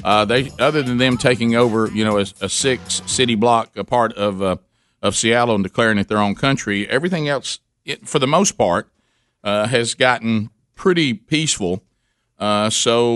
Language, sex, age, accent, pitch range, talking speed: English, male, 50-69, American, 100-125 Hz, 180 wpm